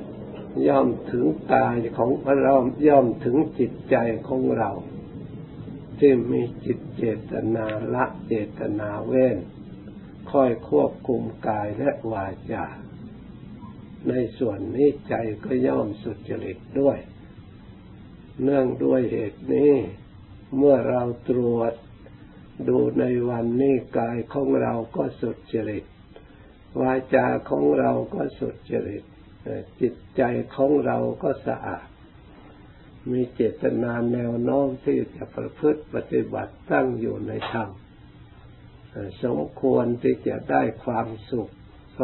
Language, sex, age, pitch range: Thai, male, 60-79, 110-135 Hz